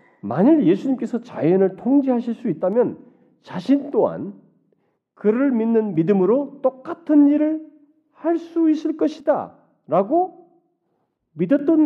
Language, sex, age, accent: Korean, male, 40-59, native